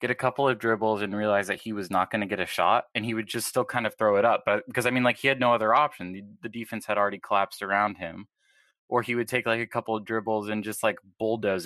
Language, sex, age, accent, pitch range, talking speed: English, male, 20-39, American, 100-125 Hz, 290 wpm